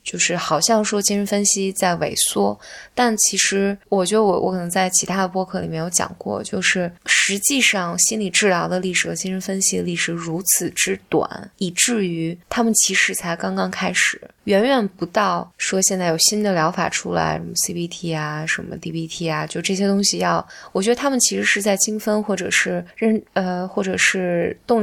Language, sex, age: Chinese, female, 20-39